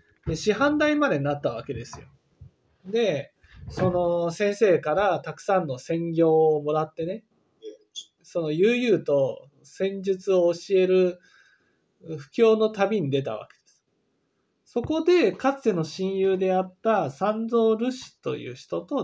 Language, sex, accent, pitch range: Japanese, male, native, 140-220 Hz